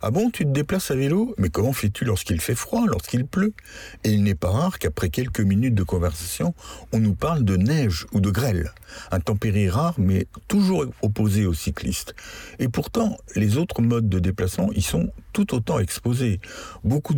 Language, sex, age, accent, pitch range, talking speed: French, male, 60-79, French, 95-120 Hz, 190 wpm